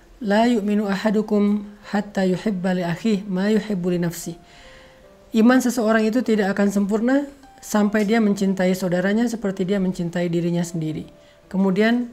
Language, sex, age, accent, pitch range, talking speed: Indonesian, male, 40-59, native, 180-210 Hz, 110 wpm